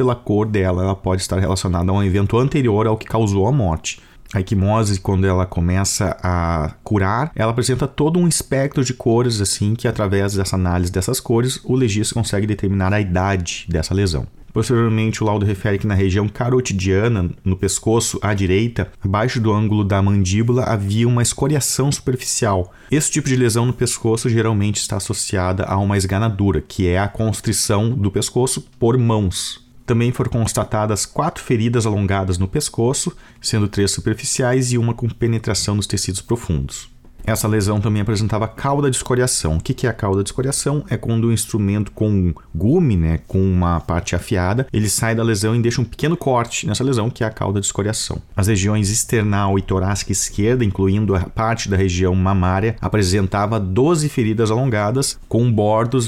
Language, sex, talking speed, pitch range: Portuguese, male, 175 wpm, 95-120 Hz